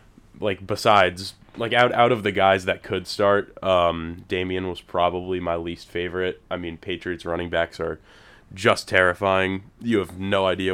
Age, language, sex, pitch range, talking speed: 20-39, English, male, 85-95 Hz, 170 wpm